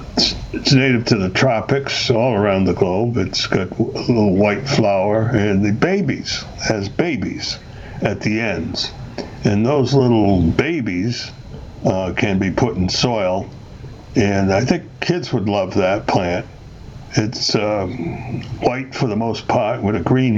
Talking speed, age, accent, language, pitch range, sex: 150 wpm, 60-79, American, English, 100-125 Hz, male